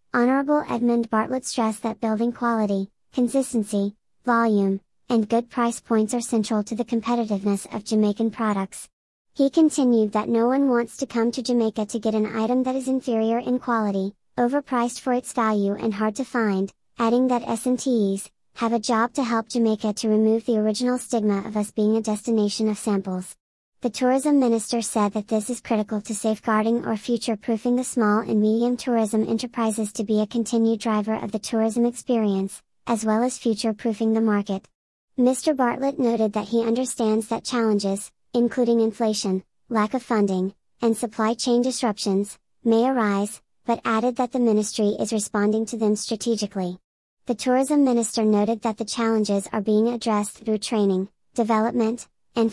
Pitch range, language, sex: 215-240 Hz, English, male